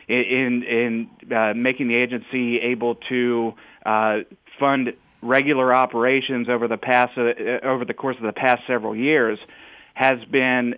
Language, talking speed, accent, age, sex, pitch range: English, 145 wpm, American, 30-49, male, 115-125 Hz